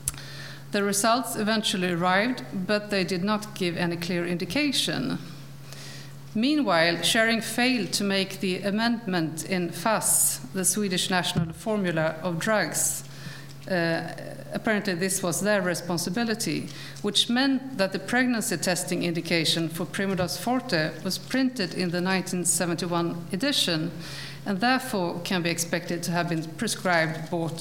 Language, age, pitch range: English, 50-69, 160-205 Hz